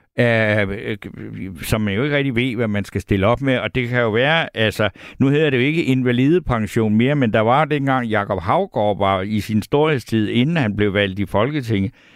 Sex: male